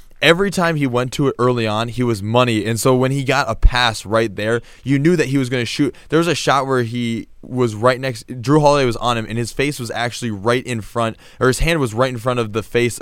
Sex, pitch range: male, 110-130 Hz